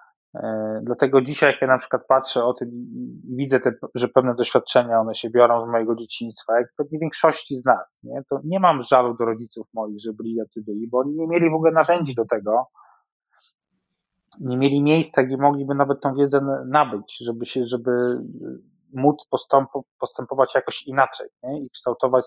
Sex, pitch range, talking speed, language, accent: male, 120-140 Hz, 180 wpm, Polish, native